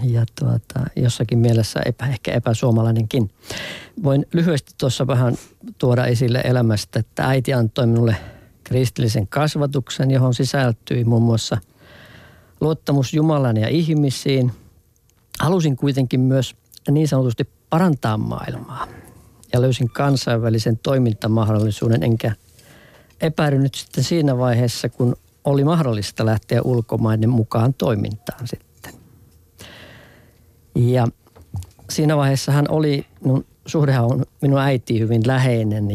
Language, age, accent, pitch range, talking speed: Finnish, 50-69, native, 115-135 Hz, 105 wpm